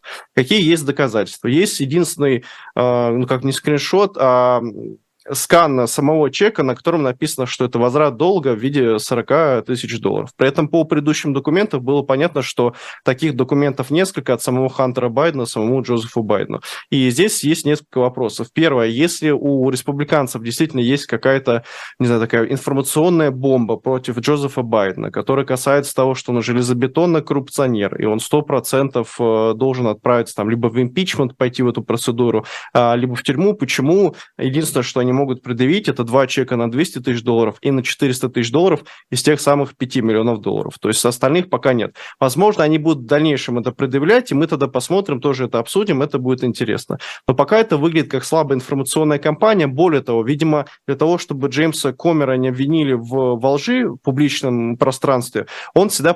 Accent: native